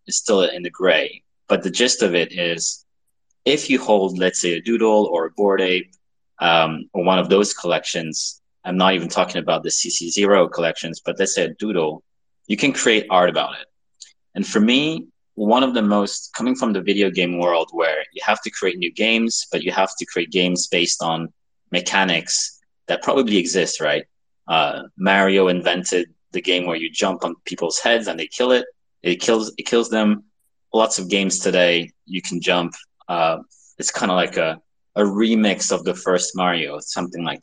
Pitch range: 90-105 Hz